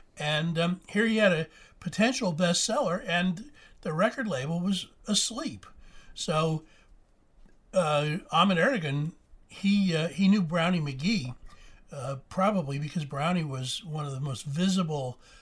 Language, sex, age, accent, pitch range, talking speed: English, male, 60-79, American, 145-190 Hz, 130 wpm